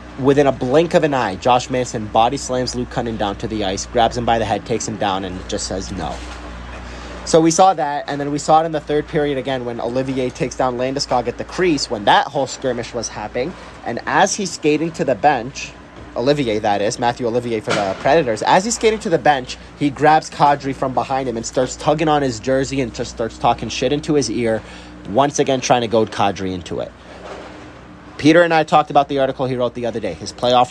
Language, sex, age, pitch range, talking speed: English, male, 30-49, 115-140 Hz, 235 wpm